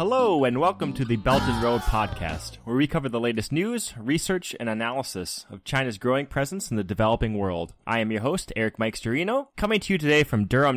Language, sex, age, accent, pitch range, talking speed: English, male, 20-39, American, 110-160 Hz, 215 wpm